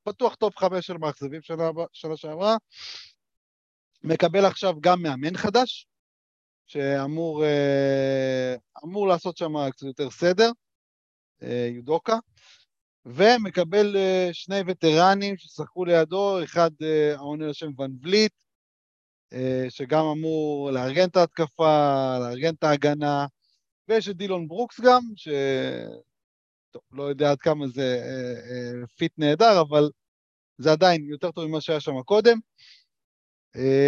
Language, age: Hebrew, 30-49